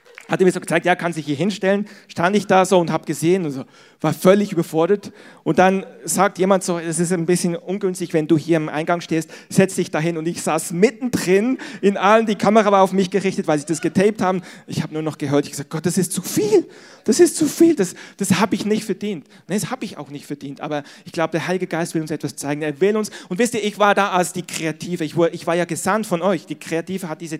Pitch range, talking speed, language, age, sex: 170-215 Hz, 265 wpm, German, 40-59, male